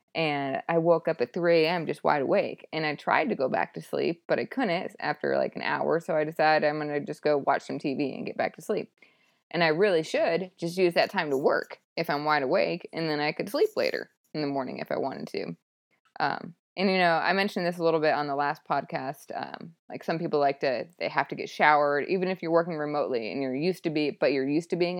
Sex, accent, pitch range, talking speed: female, American, 145-175 Hz, 255 wpm